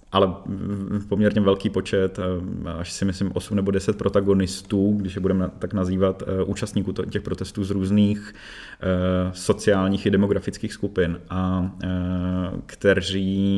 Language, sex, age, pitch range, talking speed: Czech, male, 20-39, 90-100 Hz, 120 wpm